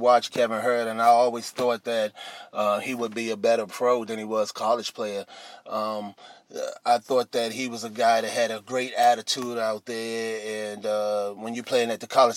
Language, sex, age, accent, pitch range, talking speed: English, male, 30-49, American, 110-120 Hz, 210 wpm